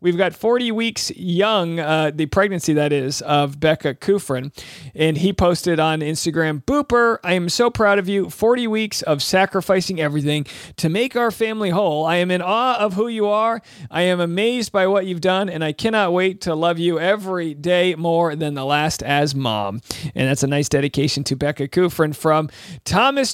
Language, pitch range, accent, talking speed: English, 155-205 Hz, American, 195 wpm